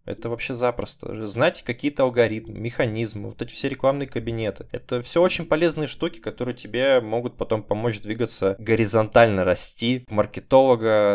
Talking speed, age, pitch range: 140 wpm, 20-39, 100-120 Hz